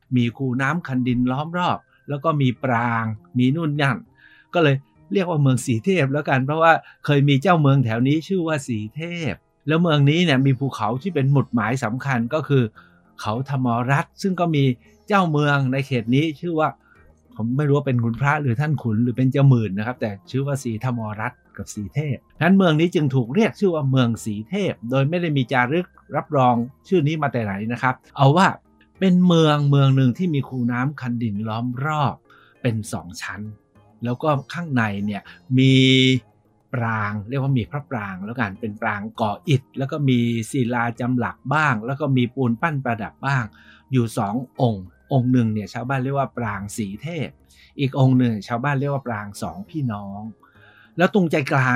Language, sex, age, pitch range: Thai, male, 60-79, 115-150 Hz